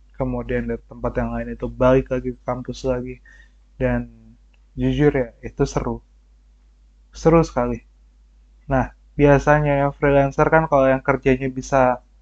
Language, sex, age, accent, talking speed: Indonesian, male, 20-39, native, 135 wpm